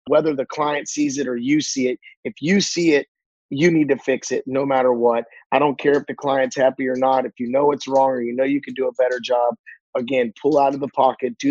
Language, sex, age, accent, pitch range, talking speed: English, male, 30-49, American, 125-145 Hz, 265 wpm